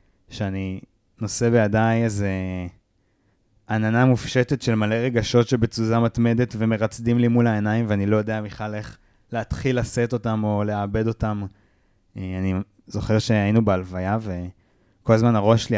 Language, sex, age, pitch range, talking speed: Hebrew, male, 20-39, 100-115 Hz, 130 wpm